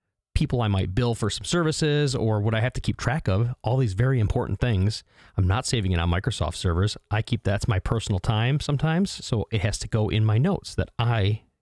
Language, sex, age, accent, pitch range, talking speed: English, male, 30-49, American, 95-125 Hz, 225 wpm